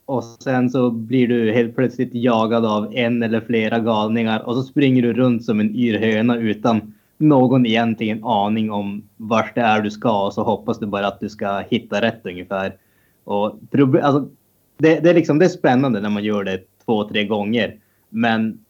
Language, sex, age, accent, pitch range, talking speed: Swedish, male, 20-39, Norwegian, 105-130 Hz, 190 wpm